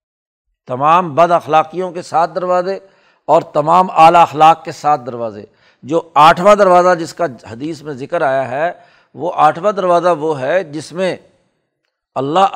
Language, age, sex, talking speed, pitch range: Urdu, 60-79, male, 150 wpm, 140-180 Hz